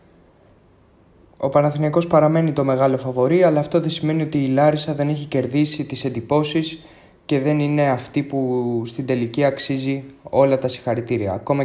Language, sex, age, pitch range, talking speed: Greek, male, 20-39, 120-145 Hz, 155 wpm